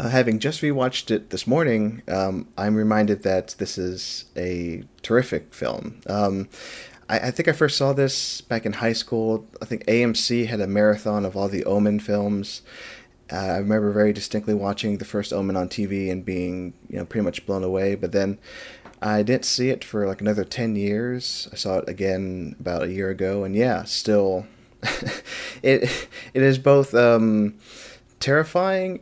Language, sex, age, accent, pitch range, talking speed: English, male, 30-49, American, 100-125 Hz, 180 wpm